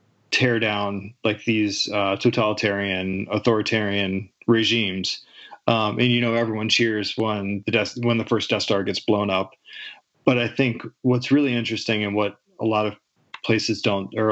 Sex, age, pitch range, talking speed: male, 30-49, 100-120 Hz, 160 wpm